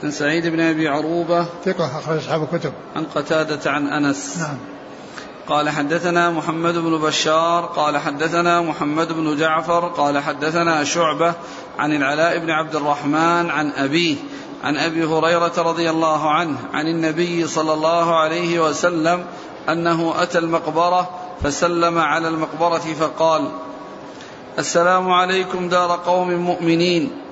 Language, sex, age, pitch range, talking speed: Arabic, male, 50-69, 160-175 Hz, 115 wpm